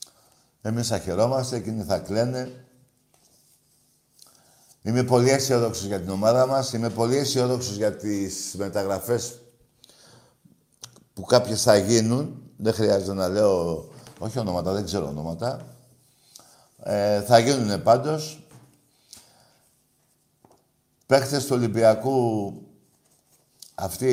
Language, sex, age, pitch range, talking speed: Greek, male, 60-79, 105-130 Hz, 100 wpm